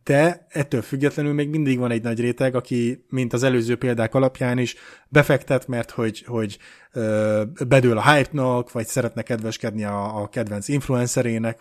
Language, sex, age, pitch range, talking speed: Hungarian, male, 30-49, 115-135 Hz, 150 wpm